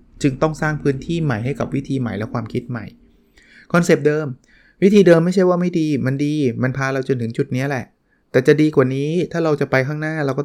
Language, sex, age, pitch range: Thai, male, 20-39, 115-140 Hz